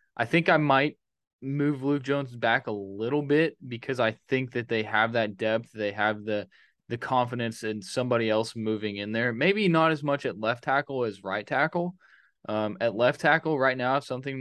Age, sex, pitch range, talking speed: 20-39, male, 110-140 Hz, 200 wpm